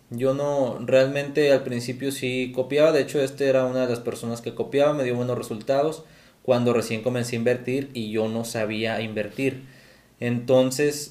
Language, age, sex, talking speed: Spanish, 20-39, male, 175 wpm